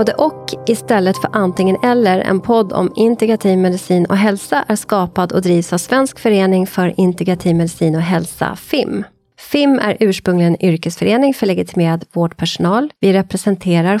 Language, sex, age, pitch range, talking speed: Swedish, female, 30-49, 175-225 Hz, 150 wpm